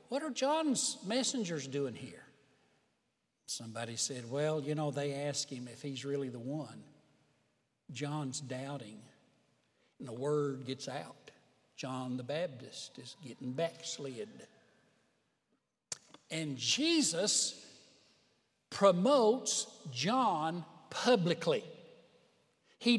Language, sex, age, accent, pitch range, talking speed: English, male, 60-79, American, 140-225 Hz, 100 wpm